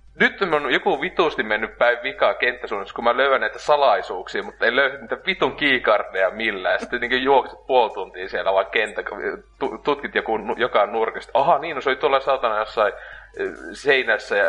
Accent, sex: native, male